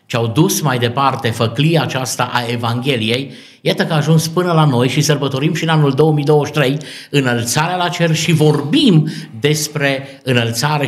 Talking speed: 160 wpm